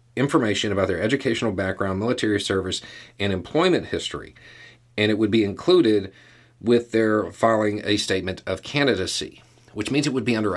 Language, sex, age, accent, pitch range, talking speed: English, male, 40-59, American, 100-120 Hz, 160 wpm